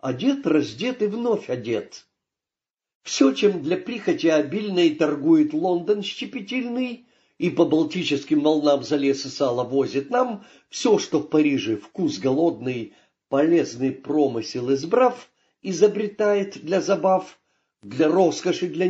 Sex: male